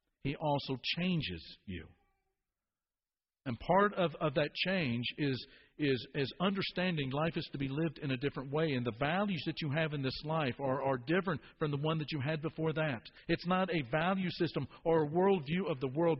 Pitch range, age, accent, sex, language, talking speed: 125-165 Hz, 50-69, American, male, English, 200 wpm